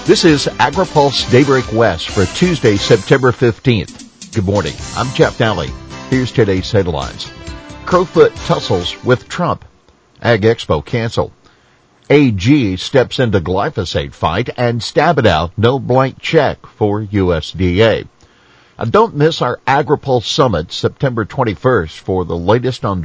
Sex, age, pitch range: male, 50-69, 90-120 Hz